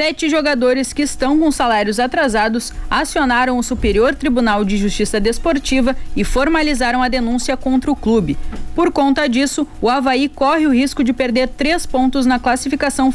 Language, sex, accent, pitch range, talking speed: Portuguese, female, Brazilian, 235-290 Hz, 160 wpm